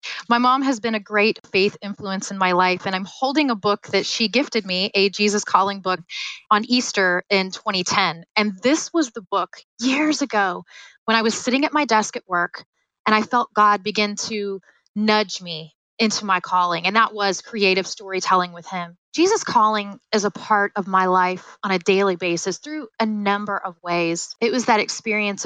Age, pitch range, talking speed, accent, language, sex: 20-39, 195-235 Hz, 195 wpm, American, English, female